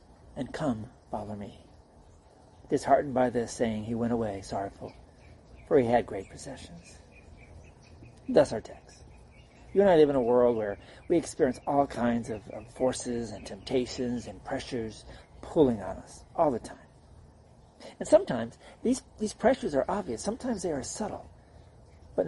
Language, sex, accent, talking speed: English, male, American, 155 wpm